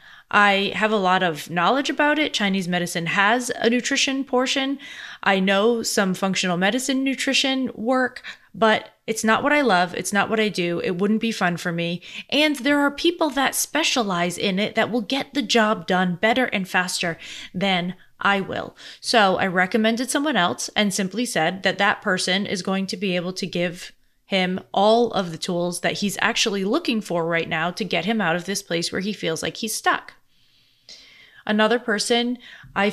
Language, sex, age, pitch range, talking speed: English, female, 20-39, 185-230 Hz, 190 wpm